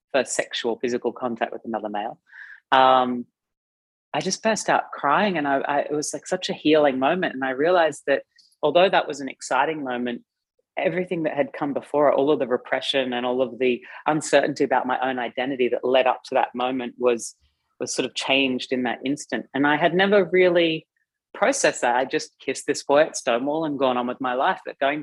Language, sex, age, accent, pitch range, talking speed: English, female, 30-49, Australian, 120-155 Hz, 205 wpm